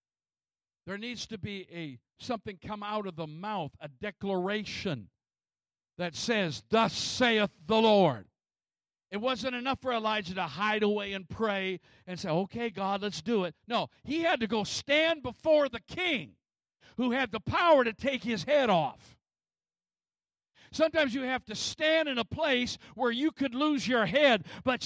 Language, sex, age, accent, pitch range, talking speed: English, male, 50-69, American, 205-285 Hz, 165 wpm